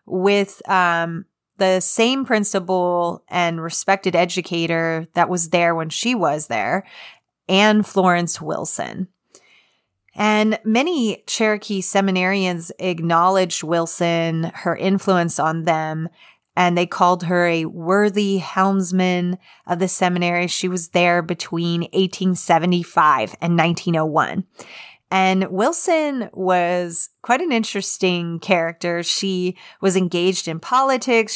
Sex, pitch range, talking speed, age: female, 170-205 Hz, 110 wpm, 30-49